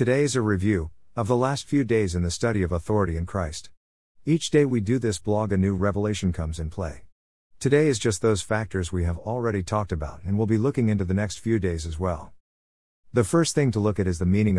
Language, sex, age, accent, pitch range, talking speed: English, male, 50-69, American, 90-120 Hz, 240 wpm